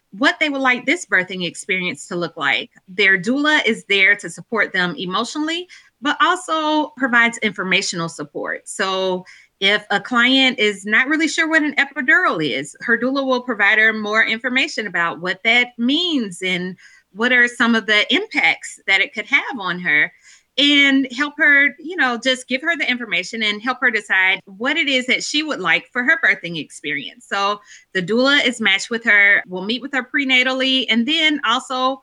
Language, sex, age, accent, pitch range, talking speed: English, female, 20-39, American, 200-275 Hz, 185 wpm